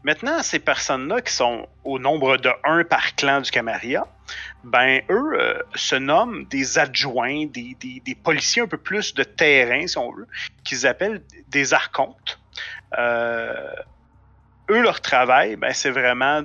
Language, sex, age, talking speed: French, male, 30-49, 155 wpm